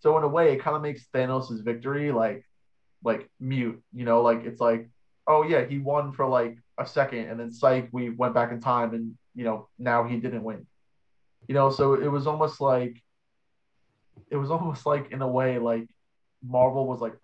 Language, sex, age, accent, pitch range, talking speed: English, male, 20-39, American, 115-135 Hz, 205 wpm